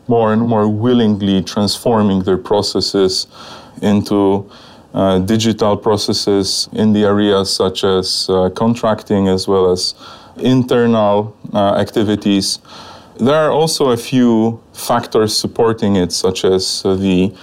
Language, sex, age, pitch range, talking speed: Polish, male, 30-49, 95-115 Hz, 120 wpm